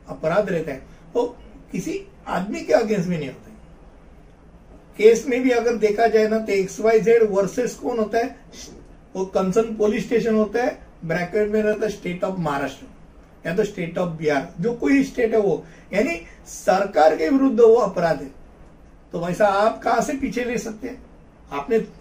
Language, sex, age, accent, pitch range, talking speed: Hindi, male, 60-79, native, 180-225 Hz, 115 wpm